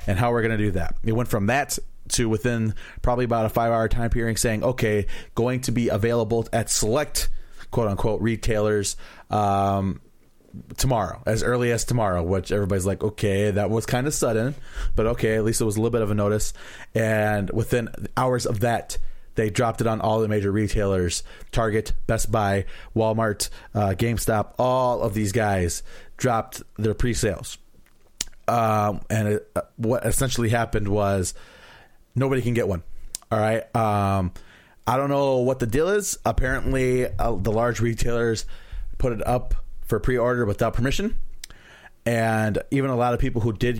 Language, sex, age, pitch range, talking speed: English, male, 30-49, 105-120 Hz, 170 wpm